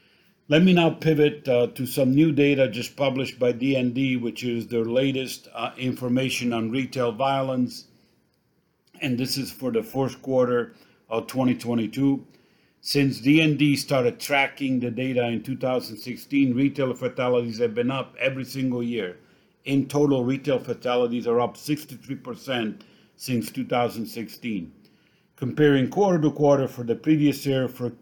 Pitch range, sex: 125-145 Hz, male